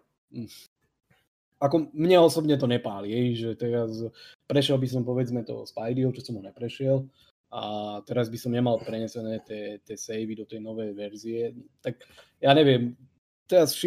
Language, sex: Slovak, male